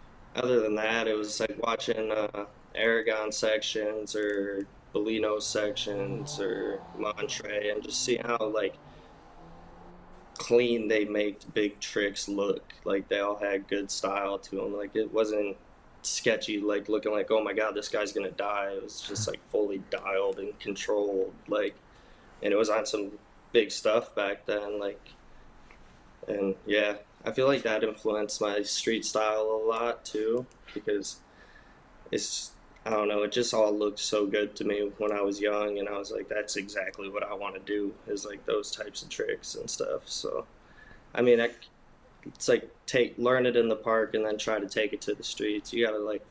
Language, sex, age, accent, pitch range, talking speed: English, male, 20-39, American, 105-110 Hz, 180 wpm